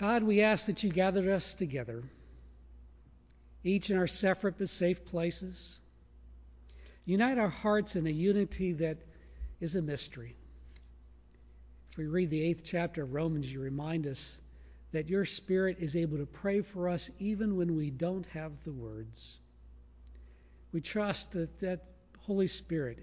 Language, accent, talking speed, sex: English, American, 150 wpm, male